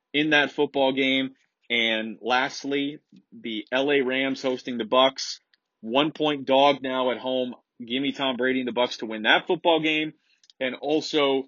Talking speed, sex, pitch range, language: 165 wpm, male, 115-140 Hz, English